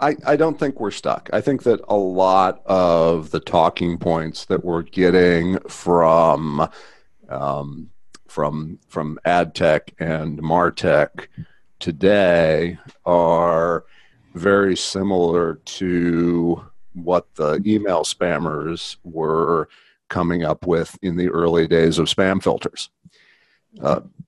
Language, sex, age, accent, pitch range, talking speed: English, male, 50-69, American, 85-95 Hz, 115 wpm